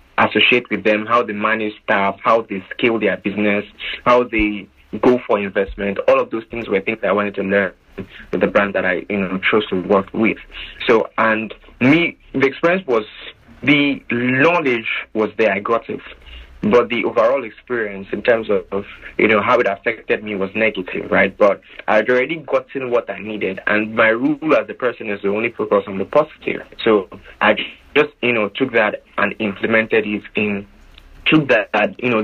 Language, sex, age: English, male, 30-49